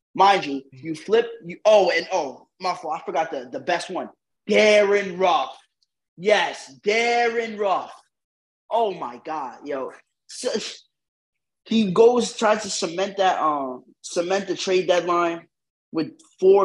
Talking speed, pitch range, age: 135 wpm, 165-225 Hz, 20-39